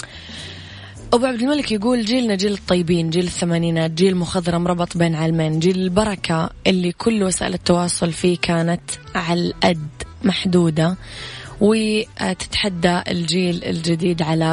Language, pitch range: English, 170-190 Hz